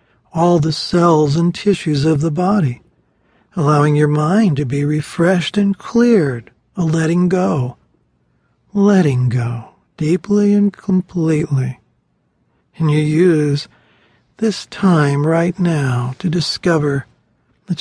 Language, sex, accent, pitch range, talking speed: English, male, American, 145-185 Hz, 115 wpm